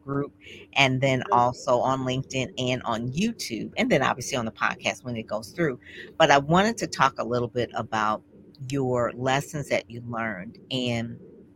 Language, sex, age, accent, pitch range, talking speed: English, female, 40-59, American, 120-145 Hz, 175 wpm